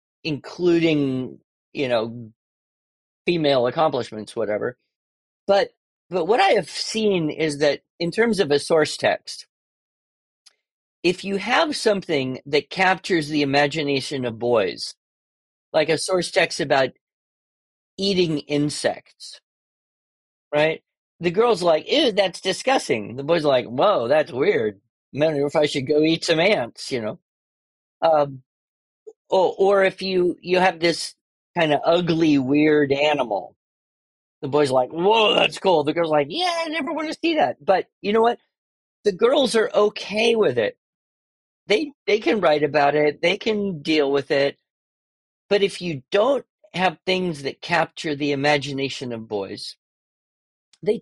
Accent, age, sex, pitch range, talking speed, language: American, 40-59, male, 145-195 Hz, 145 wpm, English